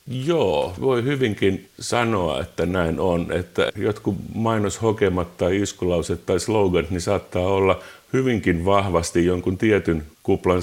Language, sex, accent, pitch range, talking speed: Finnish, male, native, 85-105 Hz, 120 wpm